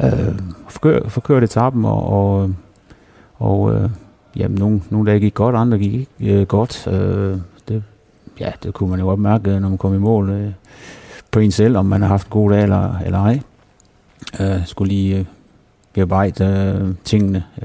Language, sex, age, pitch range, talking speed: Danish, male, 30-49, 95-110 Hz, 180 wpm